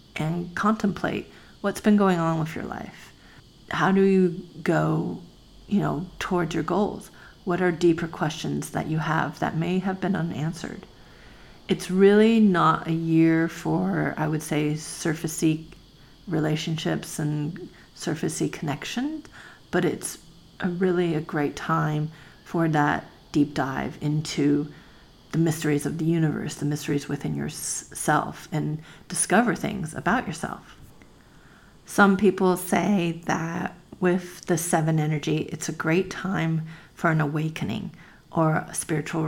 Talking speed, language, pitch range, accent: 135 wpm, English, 155-185 Hz, American